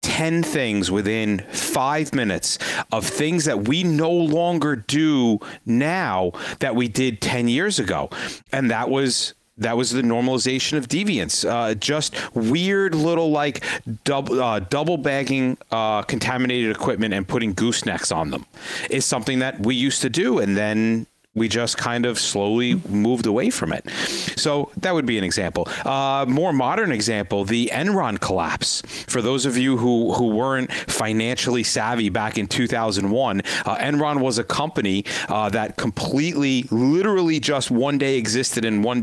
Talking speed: 160 wpm